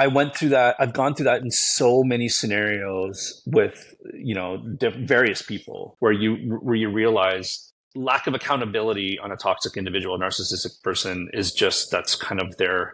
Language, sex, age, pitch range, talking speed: English, male, 30-49, 95-115 Hz, 170 wpm